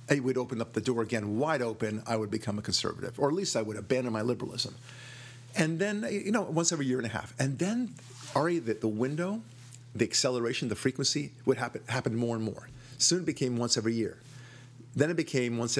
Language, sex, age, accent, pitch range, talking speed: English, male, 50-69, American, 120-130 Hz, 220 wpm